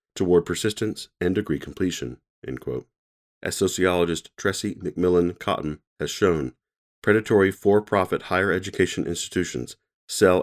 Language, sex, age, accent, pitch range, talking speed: English, male, 40-59, American, 80-95 Hz, 115 wpm